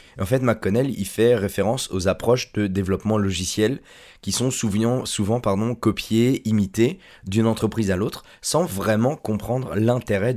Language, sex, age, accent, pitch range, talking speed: French, male, 20-39, French, 95-115 Hz, 150 wpm